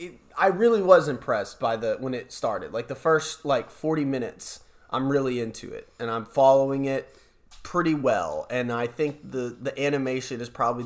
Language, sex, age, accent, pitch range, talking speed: English, male, 20-39, American, 115-150 Hz, 180 wpm